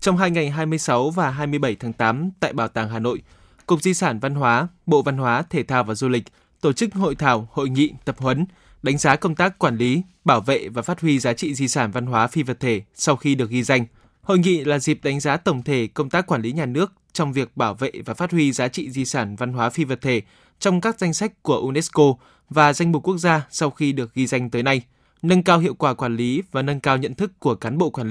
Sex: male